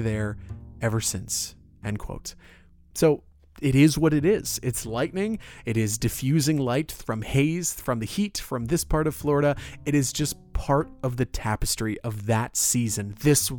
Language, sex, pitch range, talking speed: English, male, 110-135 Hz, 170 wpm